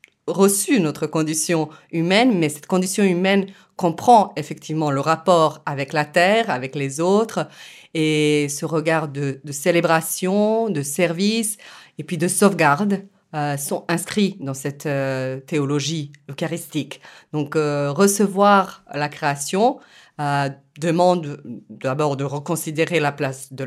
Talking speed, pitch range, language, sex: 130 wpm, 145-185 Hz, French, female